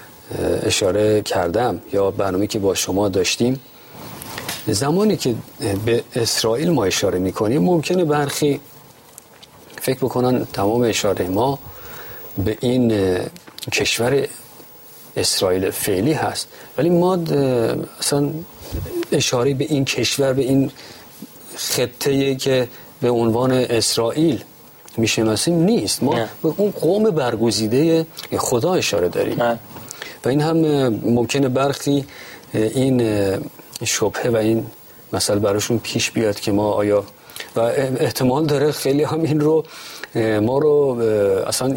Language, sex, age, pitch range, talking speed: Persian, male, 50-69, 115-150 Hz, 115 wpm